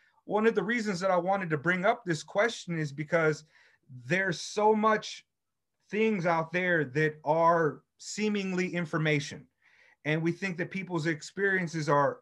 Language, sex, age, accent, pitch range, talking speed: English, male, 30-49, American, 140-175 Hz, 150 wpm